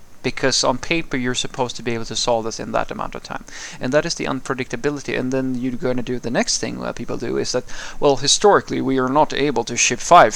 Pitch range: 120-145 Hz